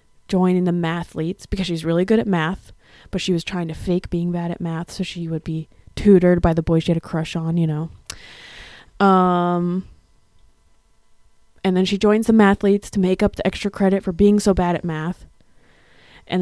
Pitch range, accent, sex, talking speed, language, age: 170-210 Hz, American, female, 195 wpm, English, 20-39